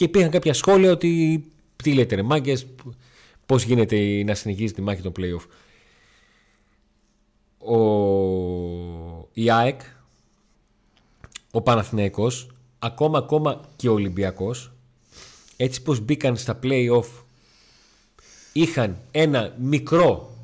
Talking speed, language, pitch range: 100 wpm, Greek, 110-150 Hz